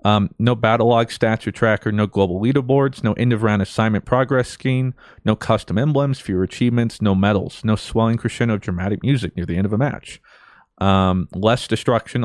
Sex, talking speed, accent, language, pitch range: male, 185 wpm, American, English, 100-125 Hz